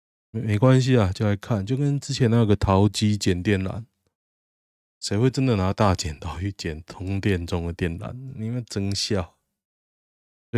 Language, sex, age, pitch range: Chinese, male, 20-39, 90-120 Hz